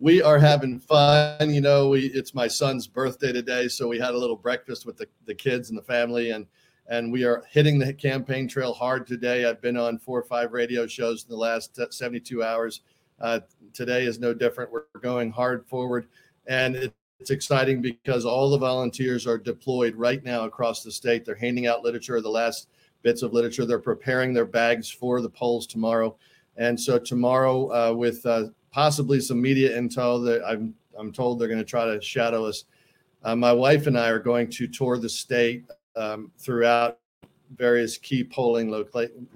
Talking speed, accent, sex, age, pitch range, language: 190 wpm, American, male, 40-59, 115-130 Hz, English